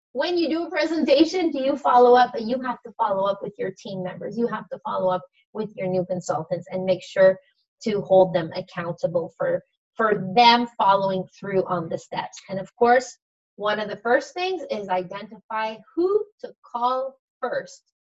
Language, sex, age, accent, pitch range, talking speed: English, female, 30-49, American, 190-265 Hz, 190 wpm